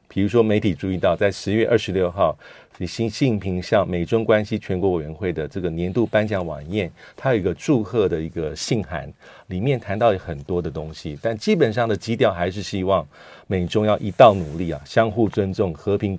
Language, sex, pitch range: Chinese, male, 85-110 Hz